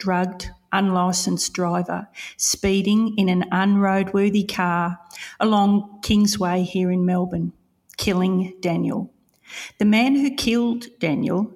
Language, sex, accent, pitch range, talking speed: English, female, Australian, 175-200 Hz, 105 wpm